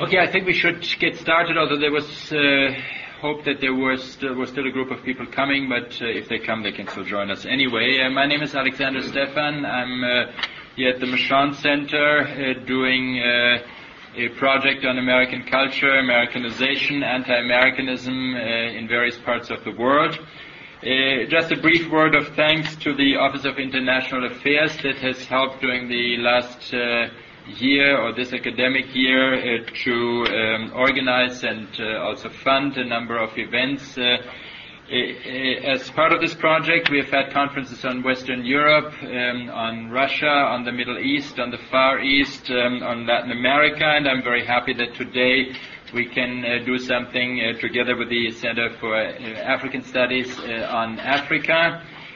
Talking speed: 170 wpm